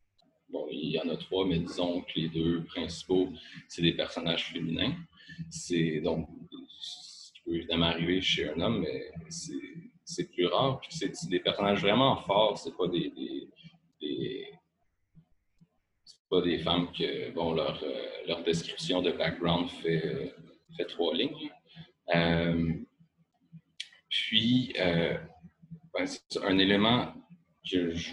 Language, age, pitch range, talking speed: French, 30-49, 85-140 Hz, 140 wpm